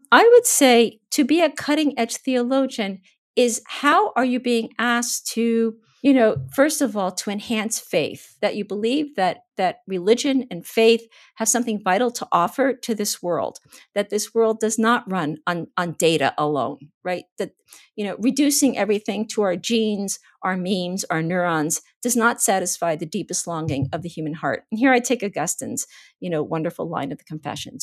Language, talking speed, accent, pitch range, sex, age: English, 185 wpm, American, 180-240 Hz, female, 50-69